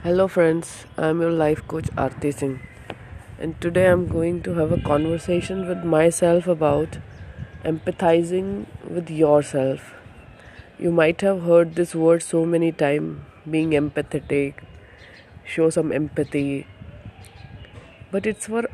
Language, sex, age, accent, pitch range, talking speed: English, female, 20-39, Indian, 150-180 Hz, 130 wpm